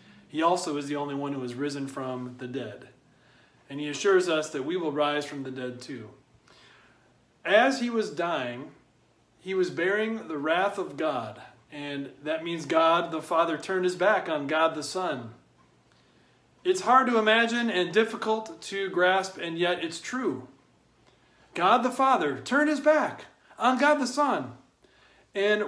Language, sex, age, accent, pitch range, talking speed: English, male, 40-59, American, 155-220 Hz, 165 wpm